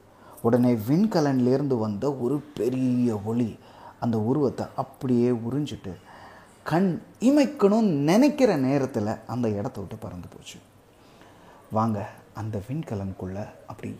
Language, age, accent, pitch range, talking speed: Tamil, 30-49, native, 105-150 Hz, 105 wpm